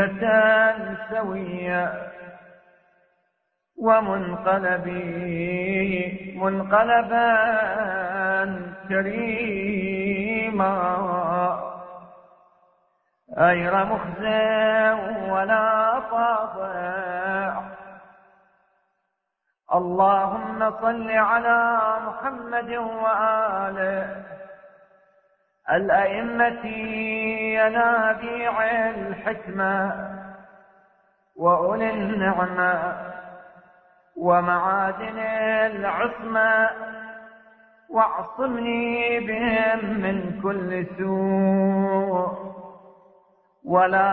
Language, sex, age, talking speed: Arabic, male, 40-59, 35 wpm